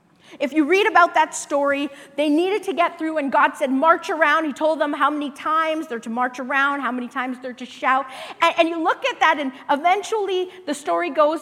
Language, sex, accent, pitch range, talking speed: English, female, American, 270-340 Hz, 220 wpm